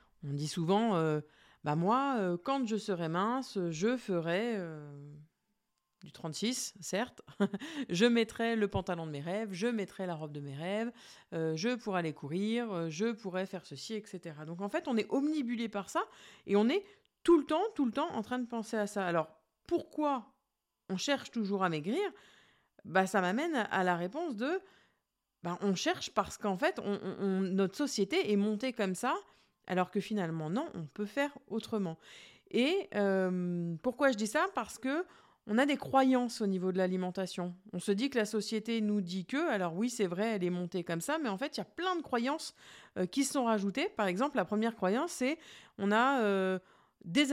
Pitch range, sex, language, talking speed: 185-250 Hz, female, French, 200 wpm